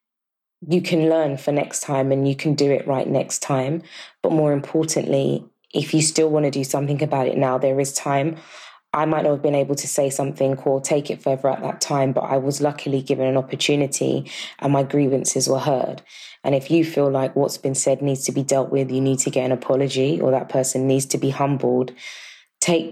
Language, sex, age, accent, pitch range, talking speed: English, female, 20-39, British, 135-150 Hz, 225 wpm